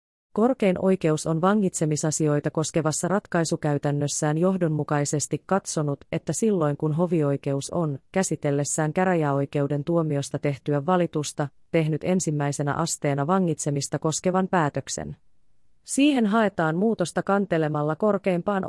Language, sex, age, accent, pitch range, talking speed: Finnish, female, 30-49, native, 150-185 Hz, 95 wpm